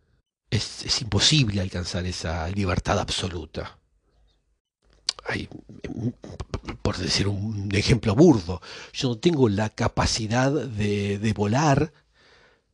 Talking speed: 95 wpm